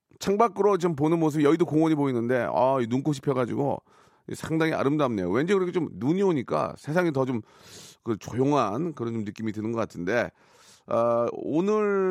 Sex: male